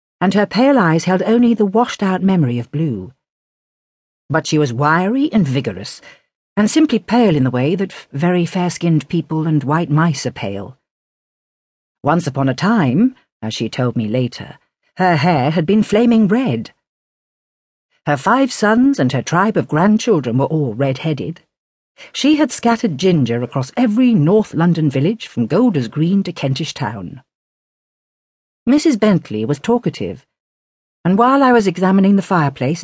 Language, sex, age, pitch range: English, female, 50-69, 135-210 Hz